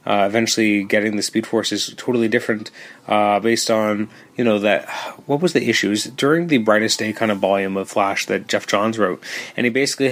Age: 30-49